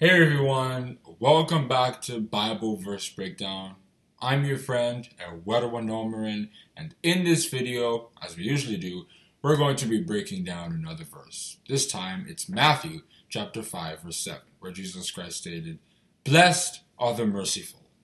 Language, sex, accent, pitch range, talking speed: English, male, American, 110-165 Hz, 145 wpm